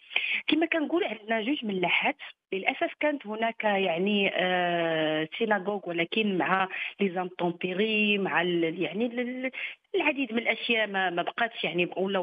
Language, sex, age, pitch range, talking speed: Arabic, female, 40-59, 180-230 Hz, 115 wpm